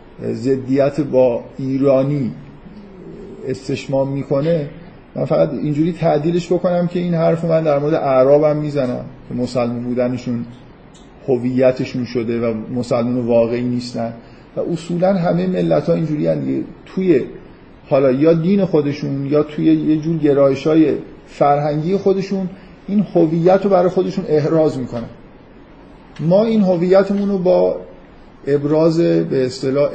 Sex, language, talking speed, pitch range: male, Persian, 120 wpm, 130-160 Hz